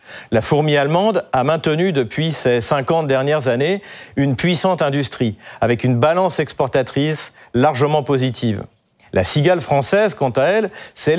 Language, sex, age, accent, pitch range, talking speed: French, male, 40-59, French, 130-180 Hz, 140 wpm